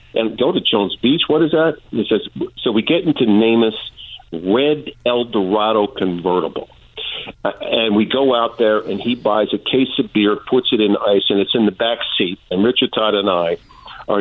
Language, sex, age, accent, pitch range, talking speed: English, male, 50-69, American, 110-150 Hz, 200 wpm